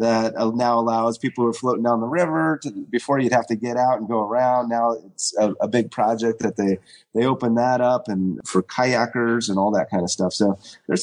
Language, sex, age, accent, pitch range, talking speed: English, male, 30-49, American, 110-135 Hz, 235 wpm